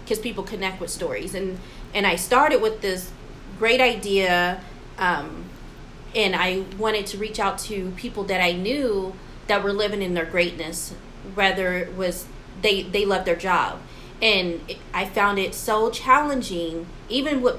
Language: English